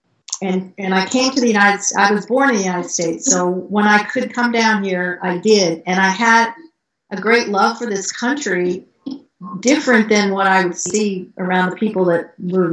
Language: English